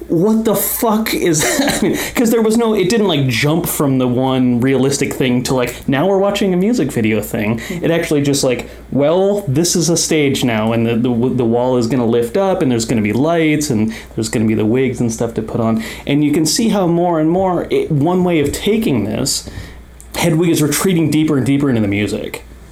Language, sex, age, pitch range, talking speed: English, male, 30-49, 115-170 Hz, 240 wpm